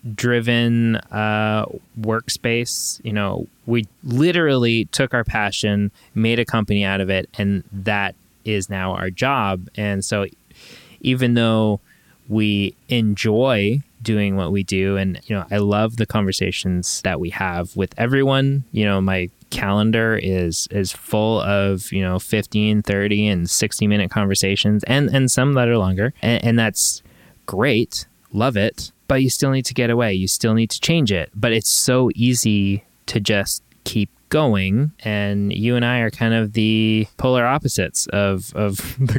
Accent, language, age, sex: American, English, 20-39, male